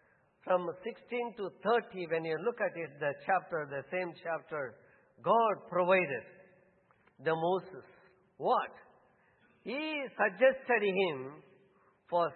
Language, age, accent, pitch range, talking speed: English, 60-79, Indian, 175-240 Hz, 110 wpm